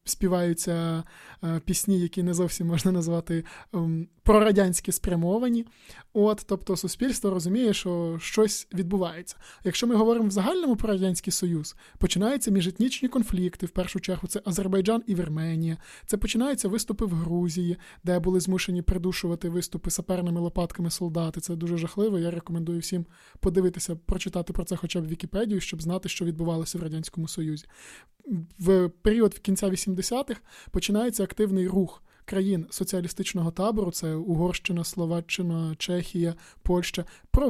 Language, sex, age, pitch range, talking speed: Ukrainian, male, 20-39, 170-200 Hz, 135 wpm